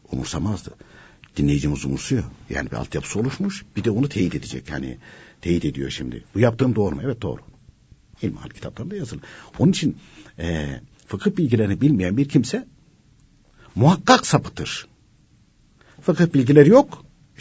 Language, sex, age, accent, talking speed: Turkish, male, 60-79, native, 135 wpm